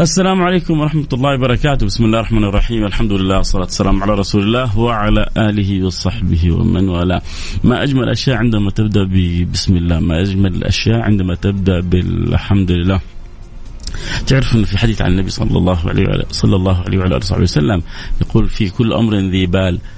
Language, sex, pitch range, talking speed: Arabic, male, 95-115 Hz, 175 wpm